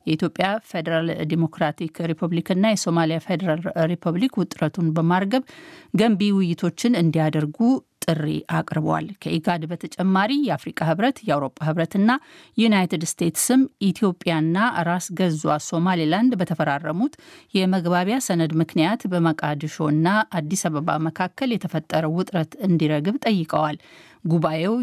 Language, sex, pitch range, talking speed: Amharic, female, 160-200 Hz, 90 wpm